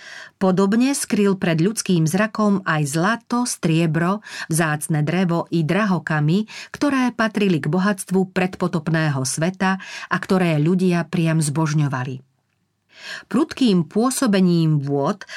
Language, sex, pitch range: Slovak, female, 155-195 Hz